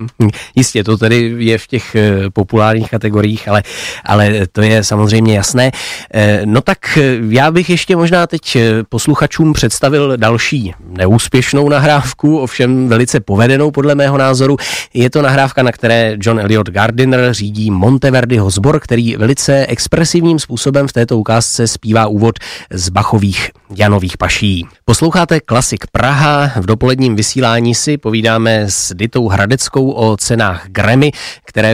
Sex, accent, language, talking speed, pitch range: male, native, Czech, 135 wpm, 105-130 Hz